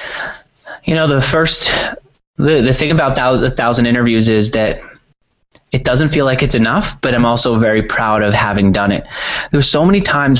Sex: male